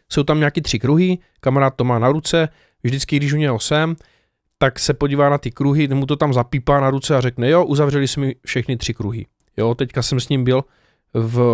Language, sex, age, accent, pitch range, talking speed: Czech, male, 20-39, native, 115-155 Hz, 225 wpm